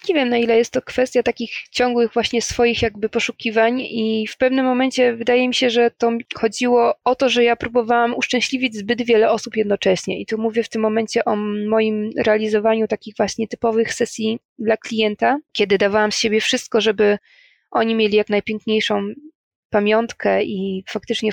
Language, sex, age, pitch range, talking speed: Polish, female, 20-39, 210-240 Hz, 170 wpm